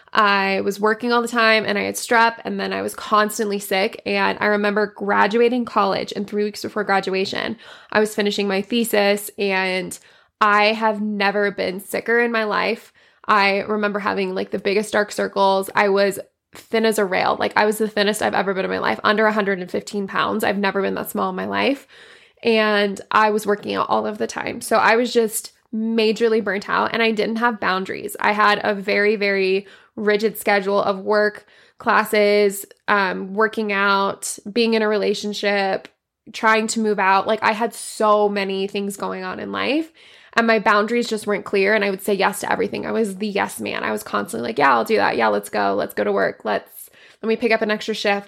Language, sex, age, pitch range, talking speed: English, female, 20-39, 200-220 Hz, 210 wpm